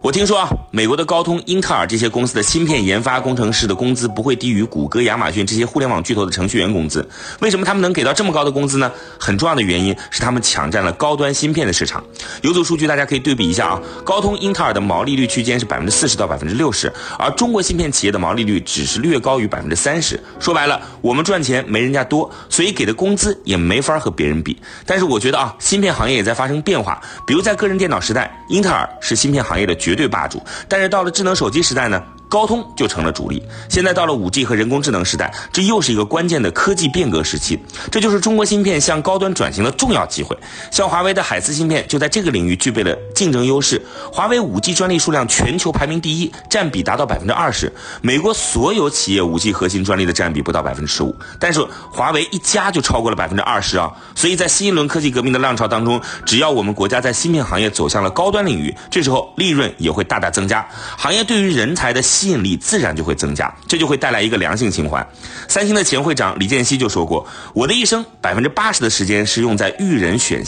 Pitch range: 110-180 Hz